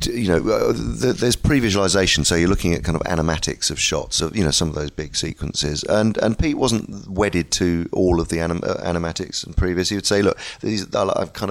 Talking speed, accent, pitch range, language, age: 230 wpm, British, 80-95 Hz, English, 30-49